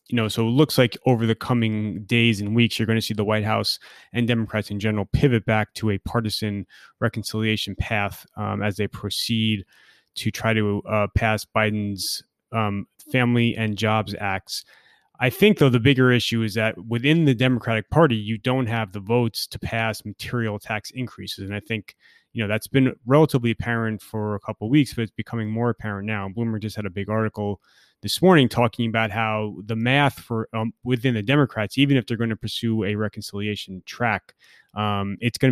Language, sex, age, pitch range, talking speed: English, male, 30-49, 105-120 Hz, 200 wpm